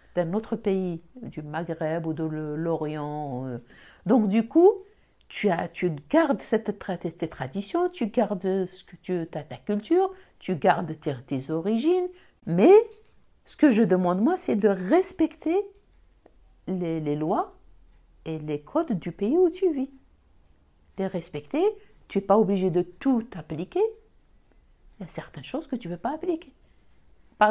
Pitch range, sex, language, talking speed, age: 180-240 Hz, female, French, 160 wpm, 60-79